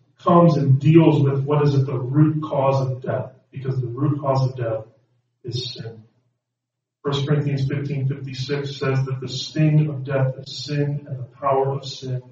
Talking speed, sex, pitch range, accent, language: 180 wpm, male, 125-140 Hz, American, English